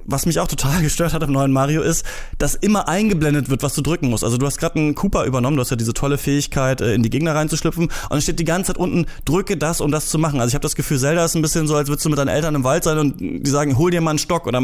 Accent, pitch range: German, 130-170 Hz